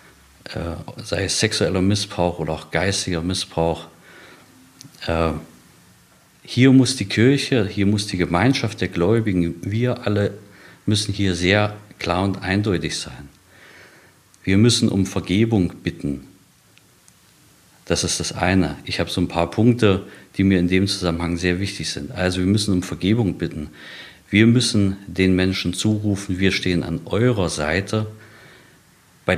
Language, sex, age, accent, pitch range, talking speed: German, male, 50-69, German, 90-105 Hz, 135 wpm